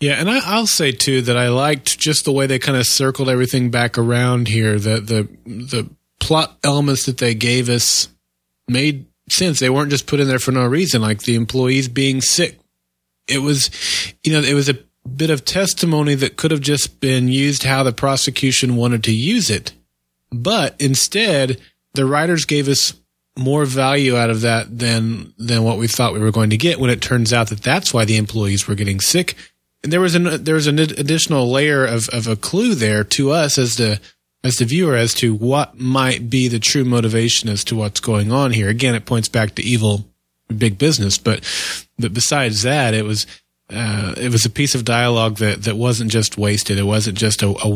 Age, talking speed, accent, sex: 30-49, 210 wpm, American, male